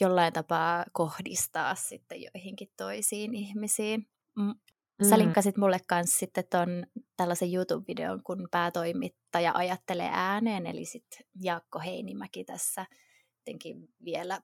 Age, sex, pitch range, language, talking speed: 20-39, female, 170-195 Hz, Finnish, 105 wpm